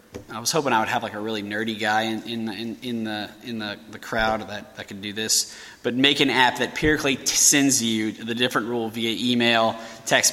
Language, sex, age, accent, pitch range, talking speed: English, male, 20-39, American, 110-150 Hz, 245 wpm